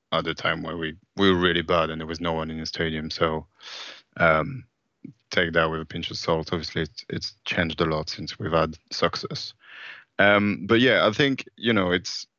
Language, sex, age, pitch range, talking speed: English, male, 30-49, 80-95 Hz, 215 wpm